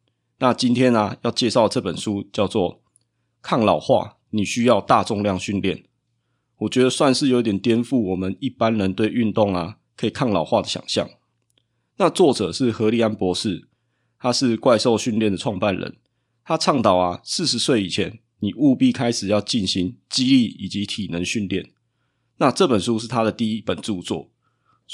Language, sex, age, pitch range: Chinese, male, 20-39, 105-125 Hz